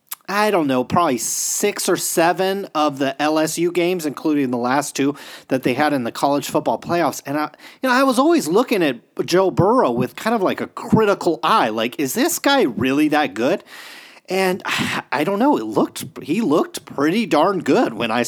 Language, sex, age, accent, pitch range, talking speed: English, male, 30-49, American, 140-185 Hz, 200 wpm